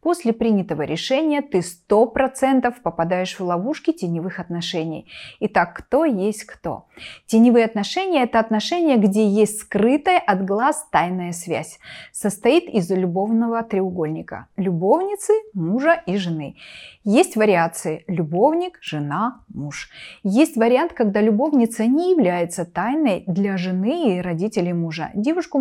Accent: native